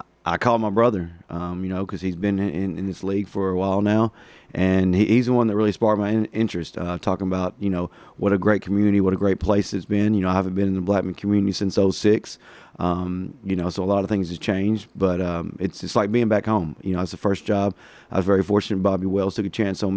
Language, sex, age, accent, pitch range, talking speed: English, male, 30-49, American, 95-105 Hz, 270 wpm